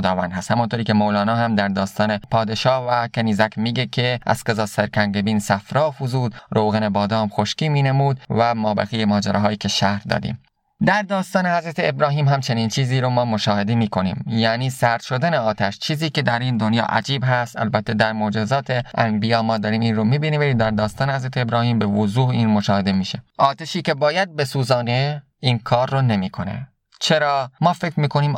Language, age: Persian, 20-39